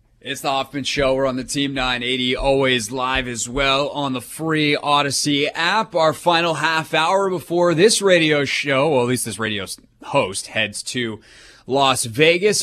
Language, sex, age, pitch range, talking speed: English, male, 30-49, 105-135 Hz, 170 wpm